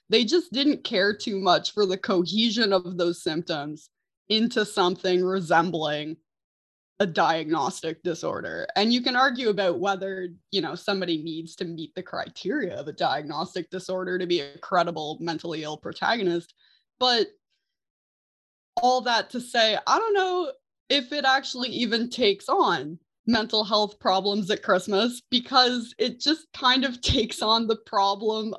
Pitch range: 185-245 Hz